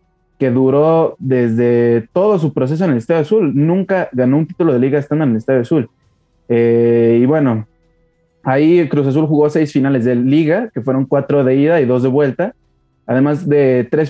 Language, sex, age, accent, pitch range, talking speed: Spanish, male, 20-39, Mexican, 120-150 Hz, 185 wpm